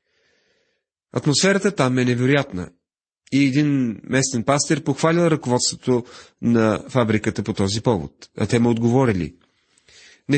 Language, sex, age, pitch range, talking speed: Bulgarian, male, 40-59, 105-140 Hz, 115 wpm